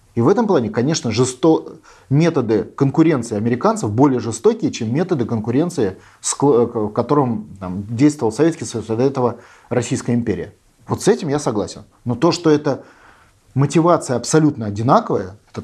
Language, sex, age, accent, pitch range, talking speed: Russian, male, 30-49, native, 115-170 Hz, 135 wpm